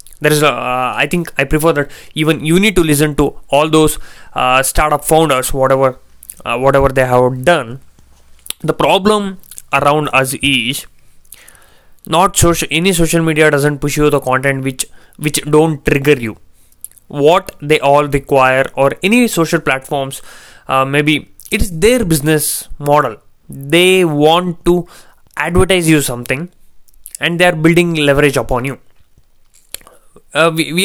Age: 20-39